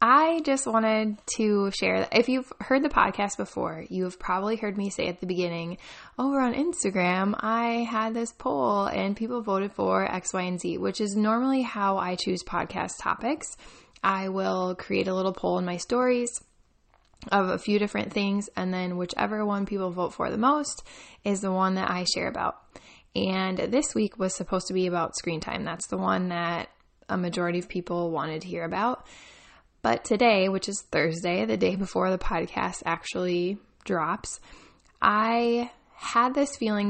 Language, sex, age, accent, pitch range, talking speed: English, female, 10-29, American, 180-220 Hz, 180 wpm